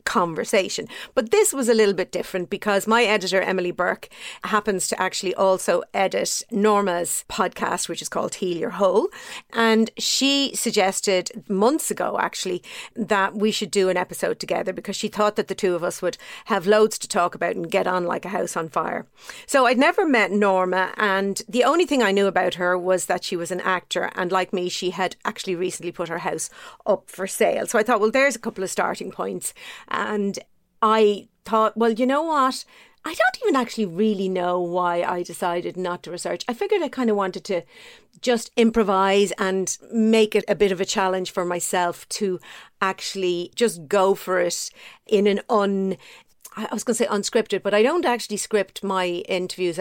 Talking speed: 195 wpm